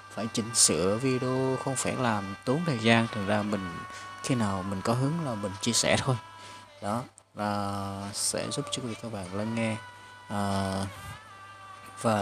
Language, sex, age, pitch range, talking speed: Vietnamese, male, 20-39, 100-120 Hz, 165 wpm